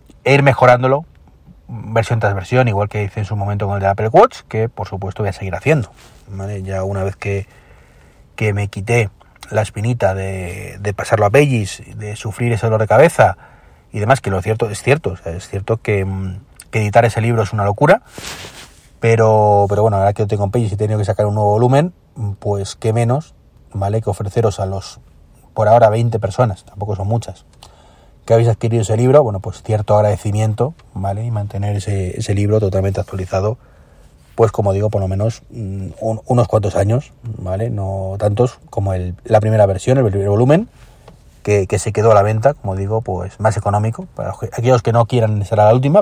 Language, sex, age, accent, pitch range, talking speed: Spanish, male, 30-49, Spanish, 100-120 Hz, 200 wpm